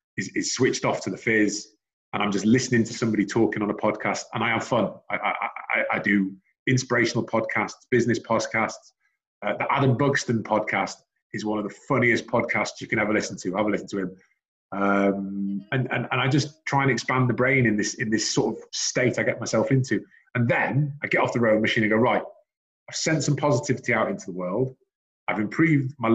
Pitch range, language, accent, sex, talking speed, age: 110-135 Hz, English, British, male, 220 wpm, 30-49